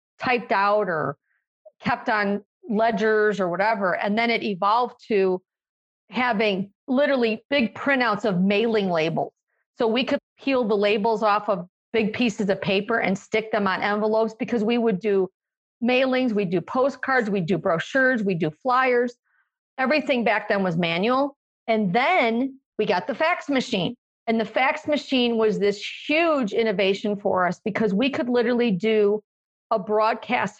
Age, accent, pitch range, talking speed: 50-69, American, 205-250 Hz, 155 wpm